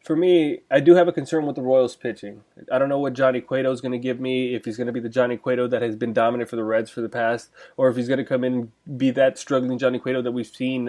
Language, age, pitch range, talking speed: English, 20-39, 125-155 Hz, 310 wpm